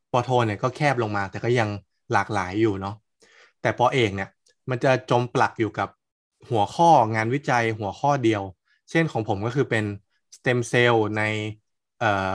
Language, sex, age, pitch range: Thai, male, 20-39, 110-145 Hz